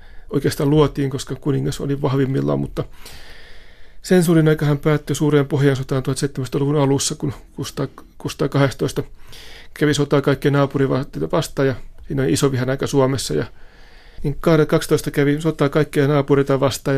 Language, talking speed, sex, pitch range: Finnish, 130 wpm, male, 130-145 Hz